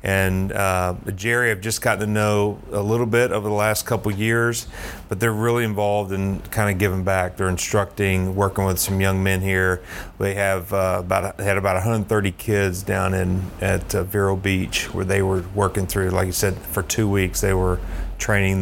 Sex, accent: male, American